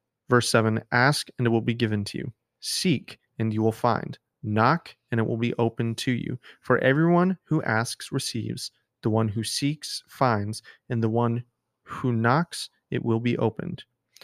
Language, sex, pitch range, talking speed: English, male, 115-135 Hz, 175 wpm